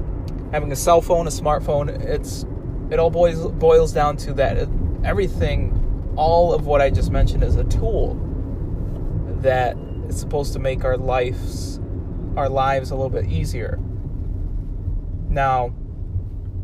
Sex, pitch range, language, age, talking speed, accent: male, 90-135 Hz, English, 20-39, 135 wpm, American